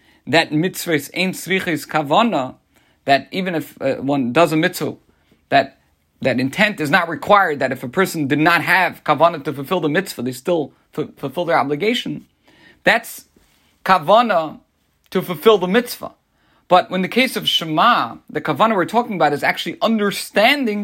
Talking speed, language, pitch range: 165 wpm, English, 140-195 Hz